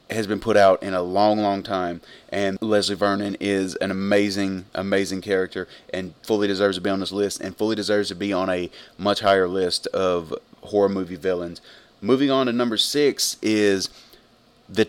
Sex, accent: male, American